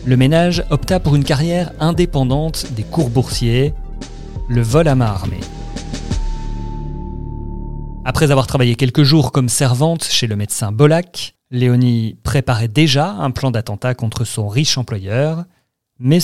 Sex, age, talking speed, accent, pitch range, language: male, 40-59, 135 wpm, French, 115-150 Hz, French